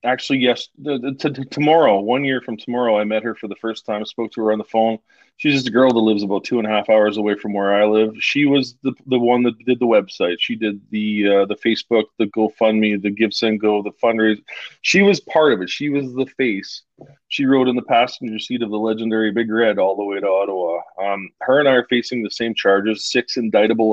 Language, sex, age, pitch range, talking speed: English, male, 20-39, 105-125 Hz, 240 wpm